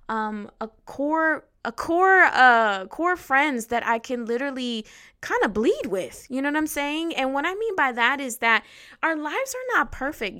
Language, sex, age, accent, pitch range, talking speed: English, female, 10-29, American, 210-255 Hz, 195 wpm